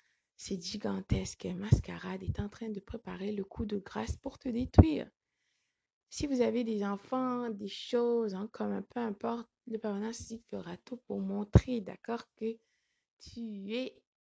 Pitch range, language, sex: 190-230 Hz, French, female